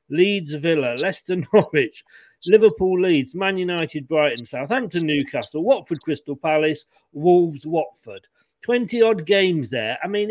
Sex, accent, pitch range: male, British, 150-220 Hz